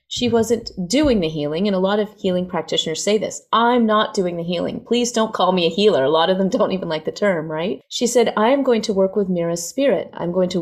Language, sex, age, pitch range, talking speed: English, female, 30-49, 165-205 Hz, 260 wpm